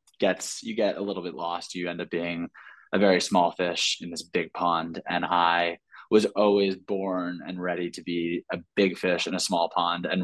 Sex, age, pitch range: male, 20-39, 90-100 Hz